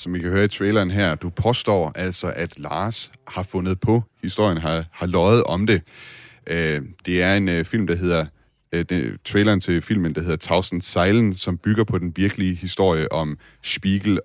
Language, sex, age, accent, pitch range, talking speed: Danish, male, 30-49, native, 85-105 Hz, 180 wpm